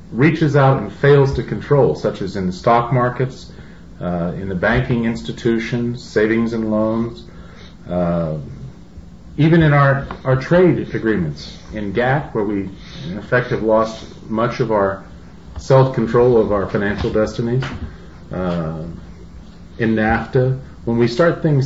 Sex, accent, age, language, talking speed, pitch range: male, American, 40-59, English, 135 wpm, 100-130 Hz